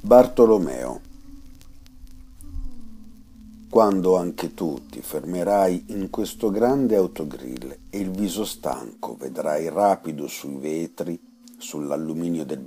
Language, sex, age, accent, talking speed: Italian, male, 50-69, native, 95 wpm